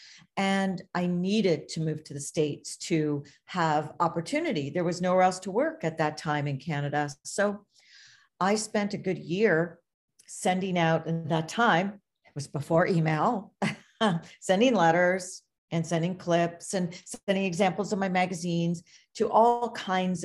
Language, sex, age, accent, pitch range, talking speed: English, female, 50-69, American, 155-190 Hz, 150 wpm